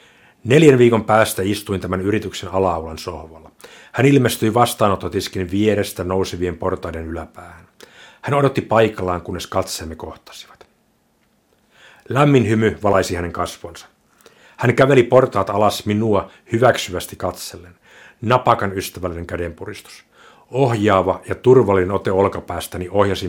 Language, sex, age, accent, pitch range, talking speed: Finnish, male, 60-79, native, 90-115 Hz, 110 wpm